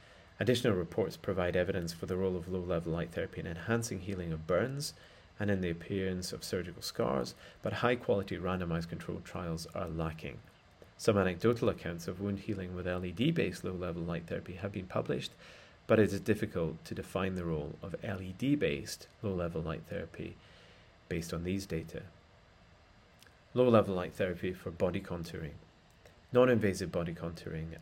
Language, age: English, 30-49